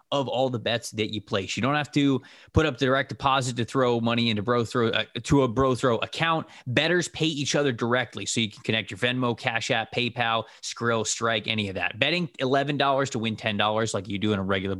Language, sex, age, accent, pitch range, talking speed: English, male, 20-39, American, 110-135 Hz, 240 wpm